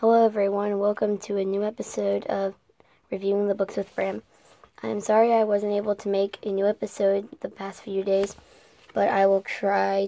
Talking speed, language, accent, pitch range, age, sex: 185 wpm, English, American, 195-215 Hz, 20-39, female